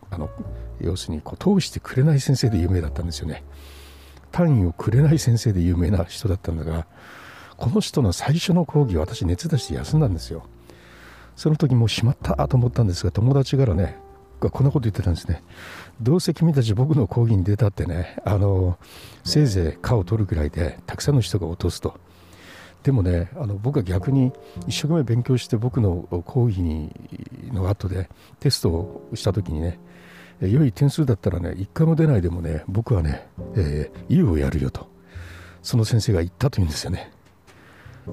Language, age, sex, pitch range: Japanese, 60-79, male, 85-120 Hz